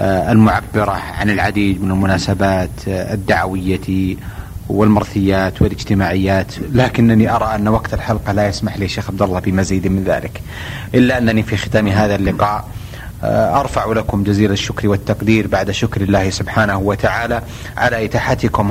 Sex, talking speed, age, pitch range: male, 130 wpm, 30-49, 100-115 Hz